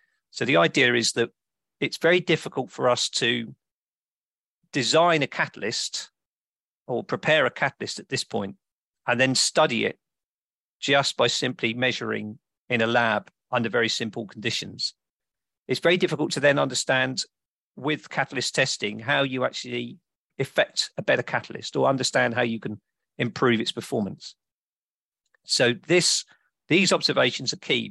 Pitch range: 115-150 Hz